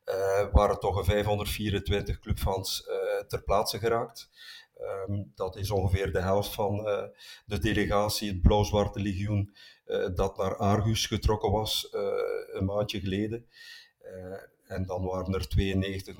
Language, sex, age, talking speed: Dutch, male, 50-69, 135 wpm